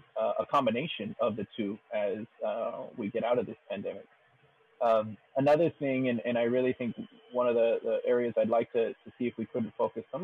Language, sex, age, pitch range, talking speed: English, male, 30-49, 110-130 Hz, 215 wpm